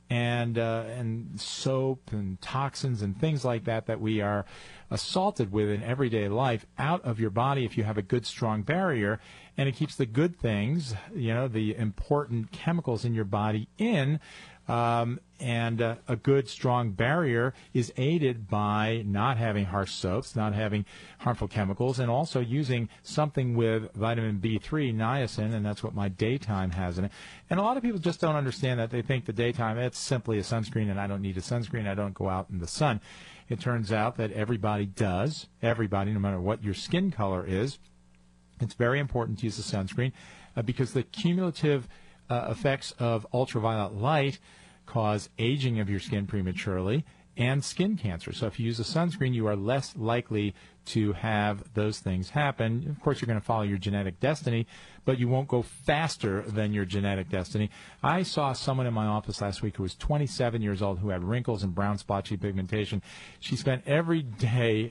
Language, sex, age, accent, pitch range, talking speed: English, male, 40-59, American, 105-130 Hz, 190 wpm